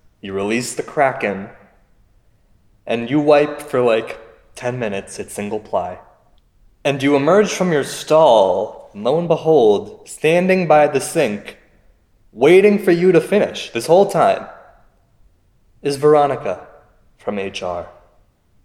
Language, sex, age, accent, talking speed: English, male, 20-39, American, 125 wpm